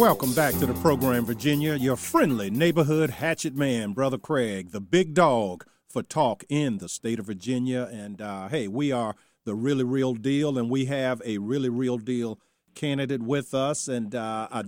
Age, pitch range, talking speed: 40-59, 125-155 Hz, 185 wpm